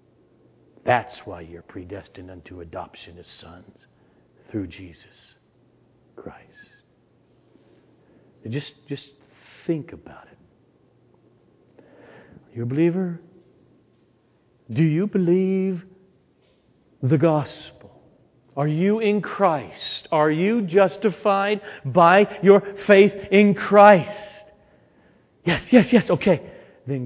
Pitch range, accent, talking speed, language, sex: 120-205 Hz, American, 90 wpm, English, male